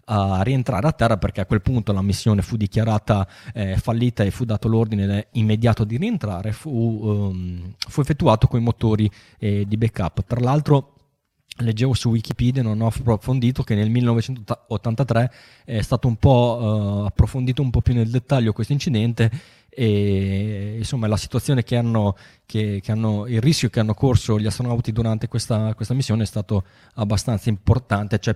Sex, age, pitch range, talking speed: male, 20-39, 105-125 Hz, 165 wpm